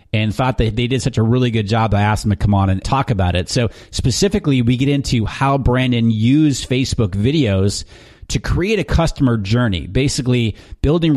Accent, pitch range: American, 105-130 Hz